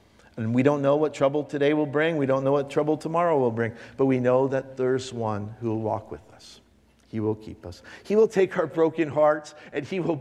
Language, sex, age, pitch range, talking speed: English, male, 50-69, 105-130 Hz, 240 wpm